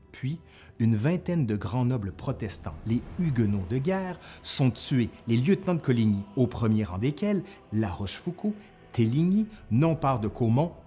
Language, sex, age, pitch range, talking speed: French, male, 30-49, 110-140 Hz, 155 wpm